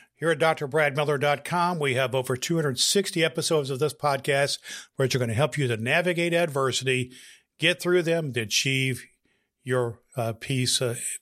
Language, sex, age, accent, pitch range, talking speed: English, male, 50-69, American, 125-160 Hz, 150 wpm